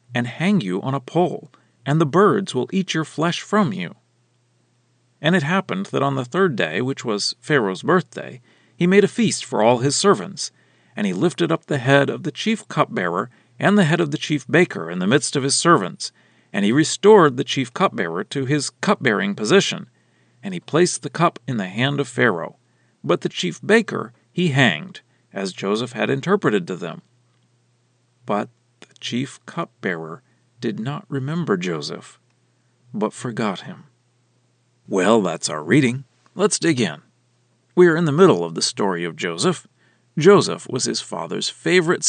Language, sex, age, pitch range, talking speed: English, male, 40-59, 125-180 Hz, 175 wpm